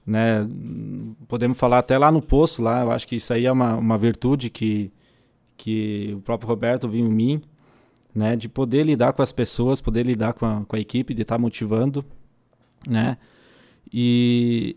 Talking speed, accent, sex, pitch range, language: 185 wpm, Brazilian, male, 115-130 Hz, Portuguese